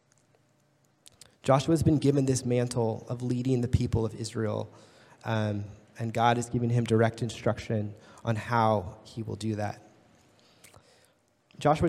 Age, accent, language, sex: 20-39, American, English, male